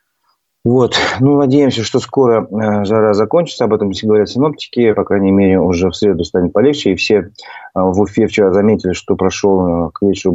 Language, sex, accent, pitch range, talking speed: Russian, male, native, 95-125 Hz, 175 wpm